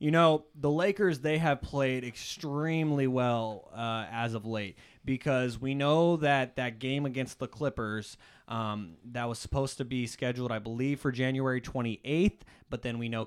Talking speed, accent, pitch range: 170 wpm, American, 120-155 Hz